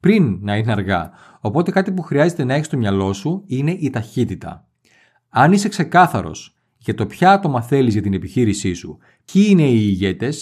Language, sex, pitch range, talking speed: Greek, male, 115-175 Hz, 185 wpm